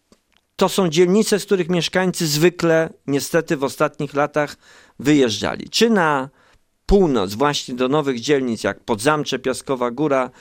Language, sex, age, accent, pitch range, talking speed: Polish, male, 50-69, native, 125-175 Hz, 135 wpm